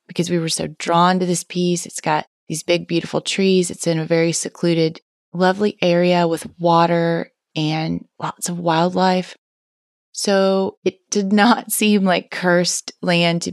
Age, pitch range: 30-49, 165-195 Hz